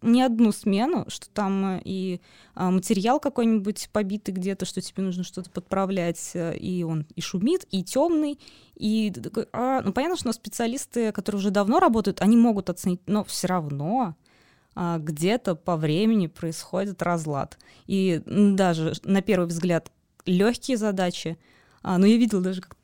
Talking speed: 140 wpm